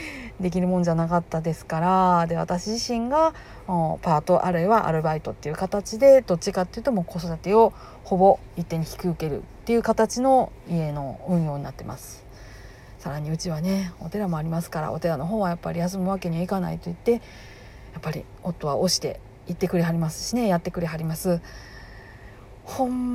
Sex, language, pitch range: female, Japanese, 160-220 Hz